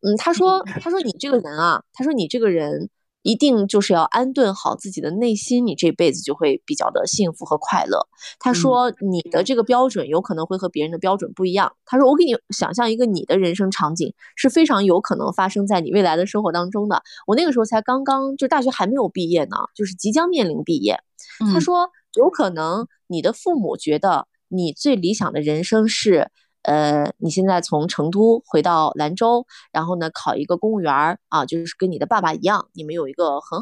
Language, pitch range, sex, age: Chinese, 180-250 Hz, female, 20-39